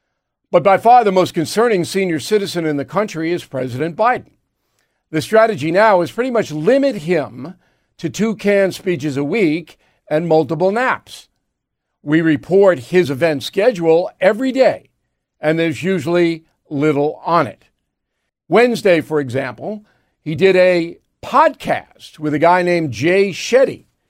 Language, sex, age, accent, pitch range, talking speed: English, male, 50-69, American, 155-185 Hz, 140 wpm